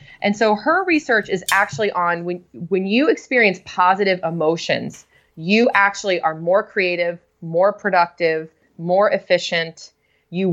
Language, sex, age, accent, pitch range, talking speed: English, female, 20-39, American, 170-205 Hz, 130 wpm